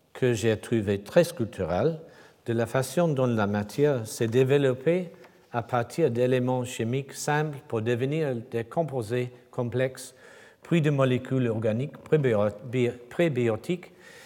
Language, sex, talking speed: French, male, 120 wpm